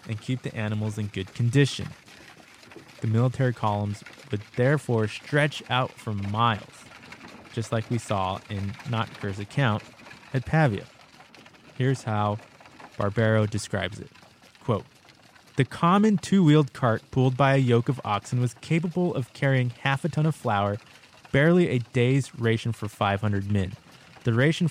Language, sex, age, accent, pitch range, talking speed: English, male, 20-39, American, 110-140 Hz, 145 wpm